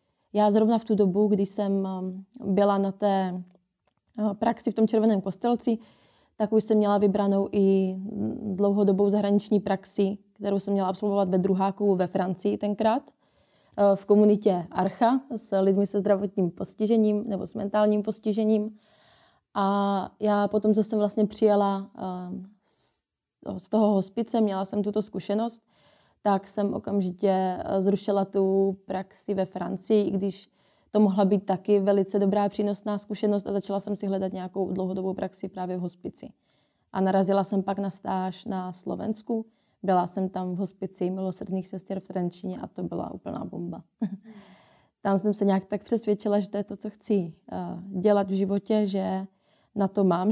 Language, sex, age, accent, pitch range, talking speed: Czech, female, 20-39, native, 190-210 Hz, 155 wpm